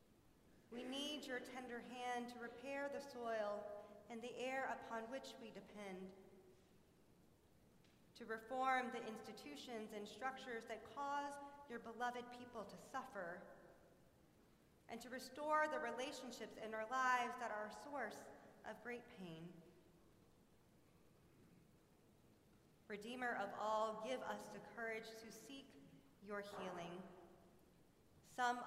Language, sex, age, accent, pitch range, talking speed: English, female, 40-59, American, 200-245 Hz, 115 wpm